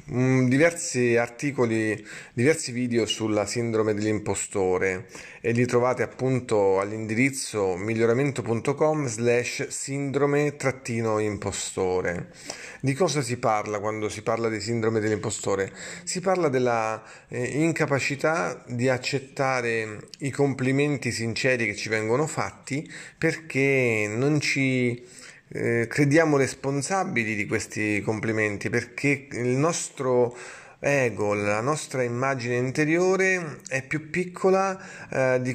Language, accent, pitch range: Italian, native, 115-145 Hz